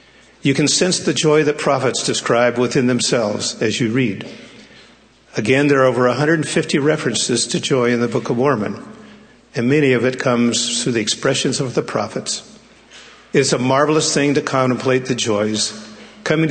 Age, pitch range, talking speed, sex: 50-69, 120-150 Hz, 165 wpm, male